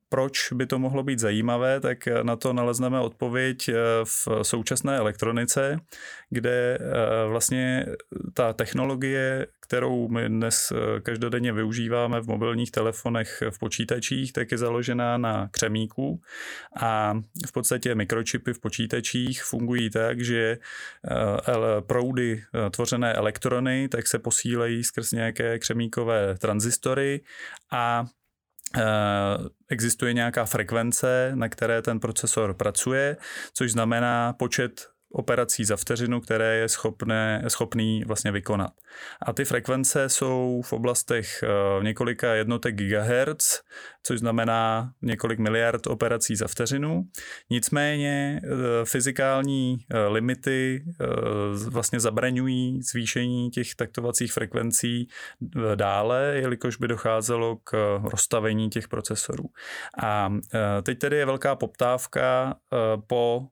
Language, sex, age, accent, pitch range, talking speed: Czech, male, 20-39, native, 110-125 Hz, 105 wpm